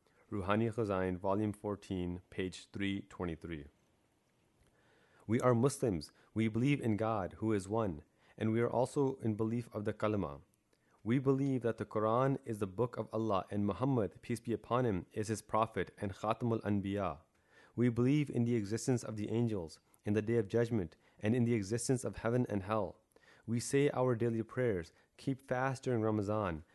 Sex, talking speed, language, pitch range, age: male, 175 wpm, English, 100-120 Hz, 30-49